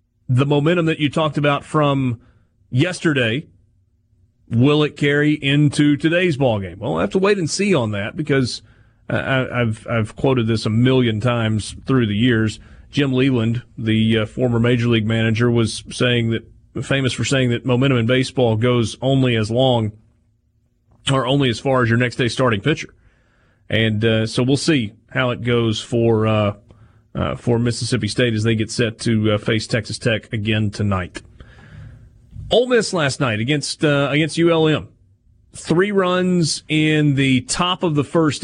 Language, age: English, 30-49